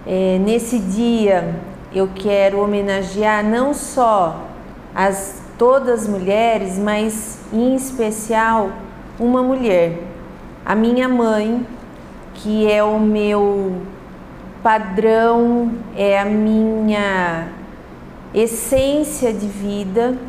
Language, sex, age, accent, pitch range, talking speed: Portuguese, female, 40-59, Brazilian, 195-245 Hz, 90 wpm